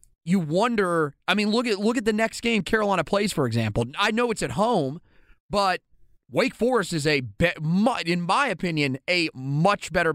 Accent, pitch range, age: American, 145-195 Hz, 30-49